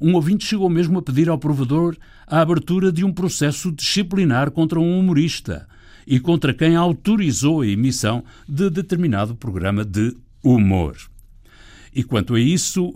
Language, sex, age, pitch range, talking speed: Portuguese, male, 60-79, 100-150 Hz, 150 wpm